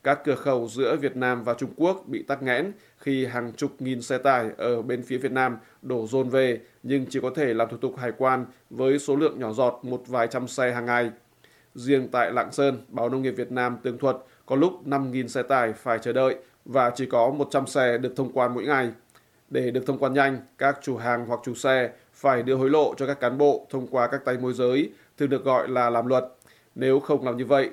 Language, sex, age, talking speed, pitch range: Vietnamese, male, 20-39, 240 wpm, 125-135 Hz